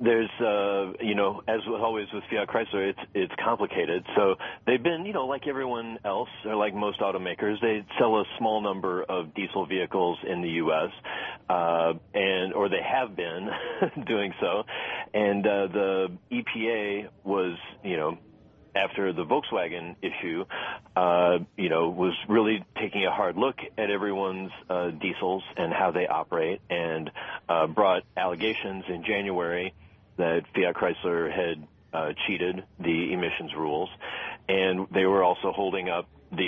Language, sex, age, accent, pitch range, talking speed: English, male, 40-59, American, 90-105 Hz, 155 wpm